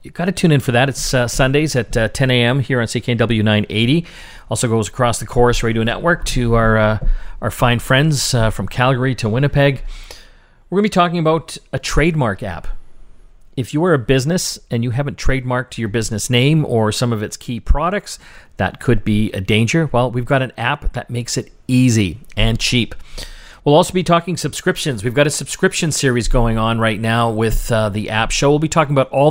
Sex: male